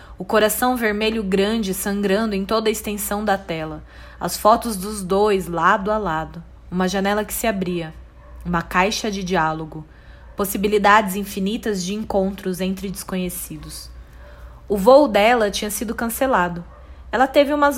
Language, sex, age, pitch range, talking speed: Portuguese, female, 20-39, 180-225 Hz, 140 wpm